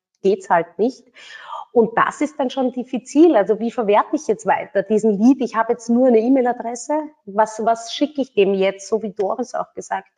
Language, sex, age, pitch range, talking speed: German, female, 30-49, 200-240 Hz, 205 wpm